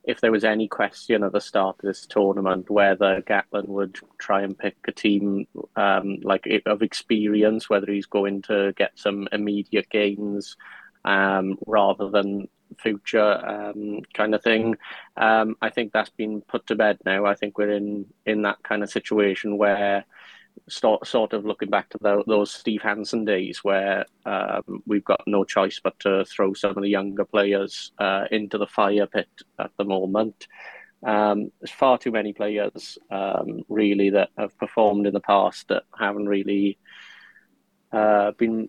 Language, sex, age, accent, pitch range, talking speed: English, male, 30-49, British, 100-105 Hz, 170 wpm